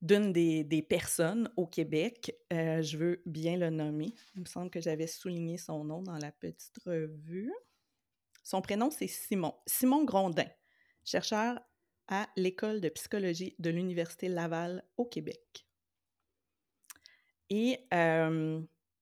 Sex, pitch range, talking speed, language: female, 160-225 Hz, 135 wpm, French